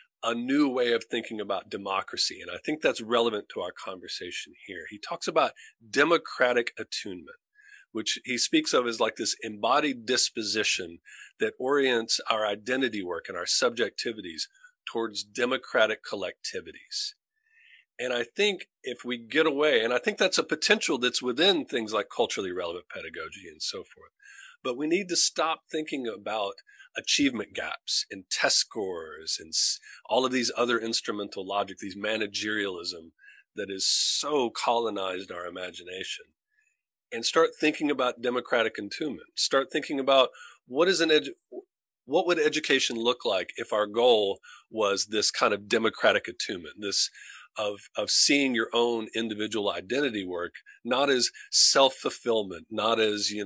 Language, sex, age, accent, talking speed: English, male, 40-59, American, 150 wpm